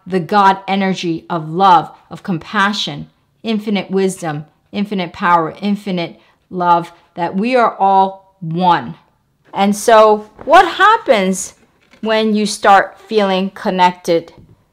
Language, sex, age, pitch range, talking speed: English, female, 40-59, 175-225 Hz, 110 wpm